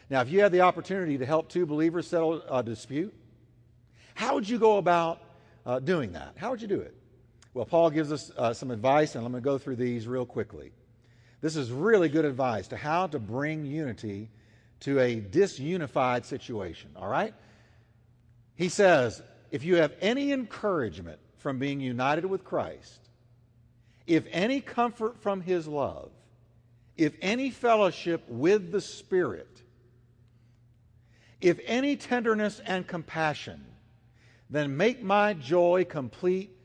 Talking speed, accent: 150 wpm, American